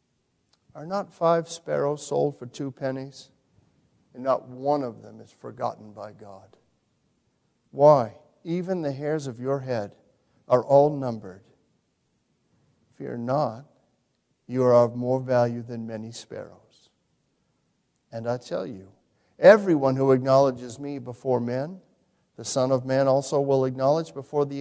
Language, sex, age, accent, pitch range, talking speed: English, male, 50-69, American, 125-175 Hz, 135 wpm